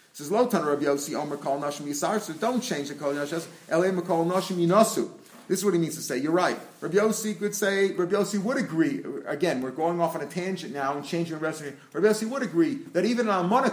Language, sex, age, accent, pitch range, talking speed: English, male, 40-59, American, 150-195 Hz, 160 wpm